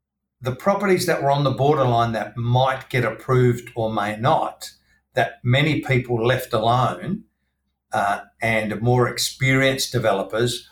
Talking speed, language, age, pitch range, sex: 135 wpm, English, 50-69, 115-145 Hz, male